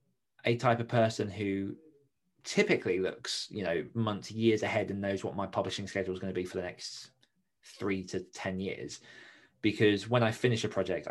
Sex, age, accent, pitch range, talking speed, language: male, 20-39, British, 95-115 Hz, 190 wpm, English